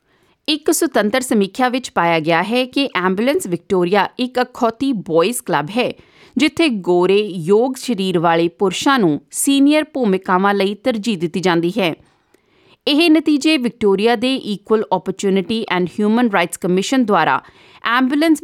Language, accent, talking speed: English, Indian, 135 wpm